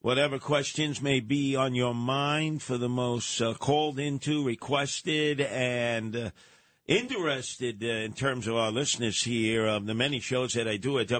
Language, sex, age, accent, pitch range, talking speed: English, male, 50-69, American, 110-130 Hz, 170 wpm